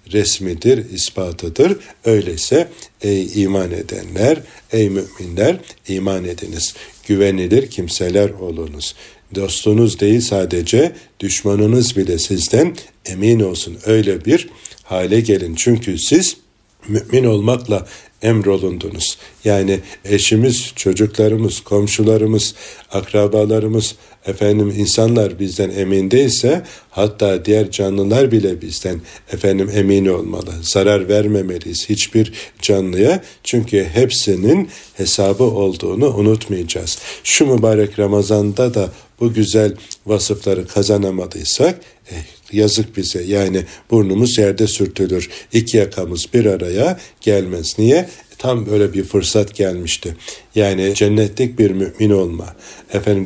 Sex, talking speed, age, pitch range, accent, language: male, 100 wpm, 60-79, 95-110 Hz, native, Turkish